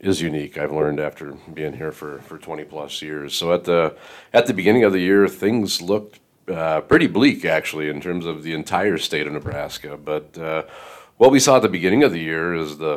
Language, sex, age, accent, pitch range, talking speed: English, male, 40-59, American, 80-95 Hz, 220 wpm